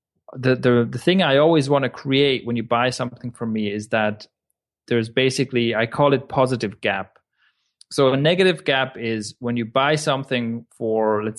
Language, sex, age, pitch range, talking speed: English, male, 30-49, 115-140 Hz, 185 wpm